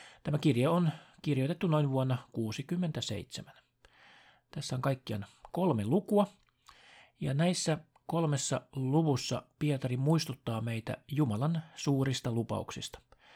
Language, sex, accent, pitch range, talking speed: Finnish, male, native, 120-155 Hz, 100 wpm